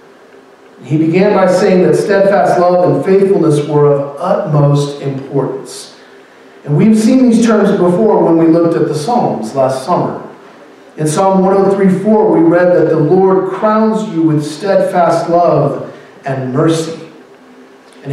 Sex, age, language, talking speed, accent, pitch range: male, 40-59, English, 140 wpm, American, 150-190 Hz